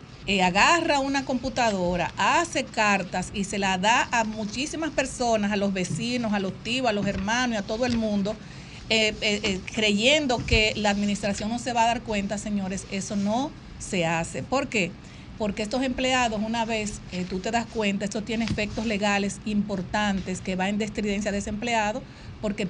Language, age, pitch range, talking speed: Spanish, 50-69, 200-235 Hz, 185 wpm